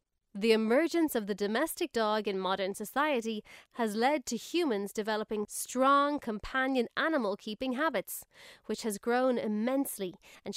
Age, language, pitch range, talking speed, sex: 30-49, English, 210-275 Hz, 130 wpm, female